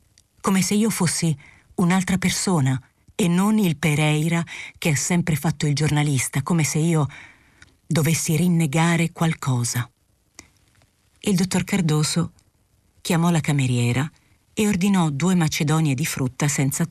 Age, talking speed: 40-59, 125 wpm